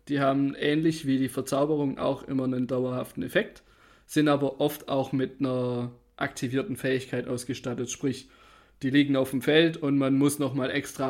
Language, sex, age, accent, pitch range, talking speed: German, male, 20-39, German, 130-150 Hz, 170 wpm